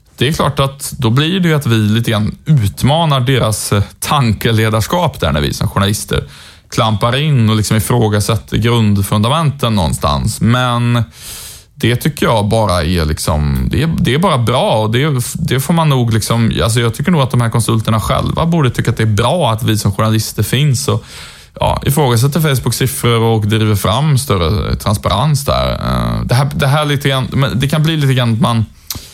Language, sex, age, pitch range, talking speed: Swedish, male, 20-39, 105-130 Hz, 175 wpm